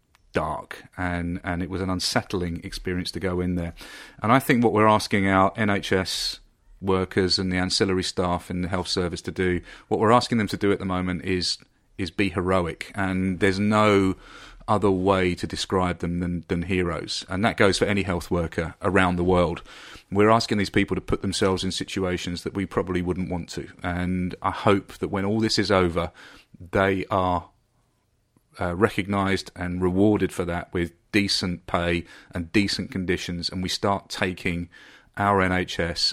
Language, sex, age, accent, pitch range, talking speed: English, male, 40-59, British, 90-100 Hz, 180 wpm